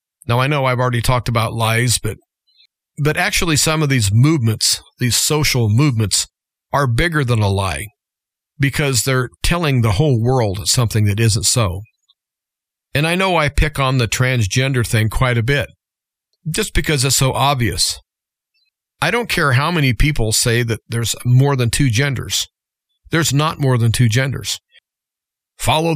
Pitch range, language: 115-150 Hz, English